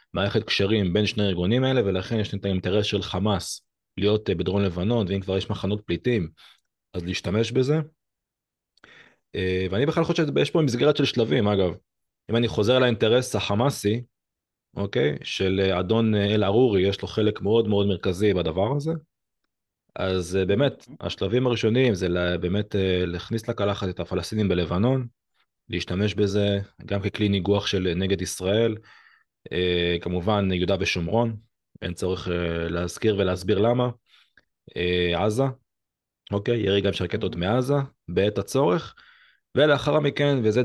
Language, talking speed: Hebrew, 135 wpm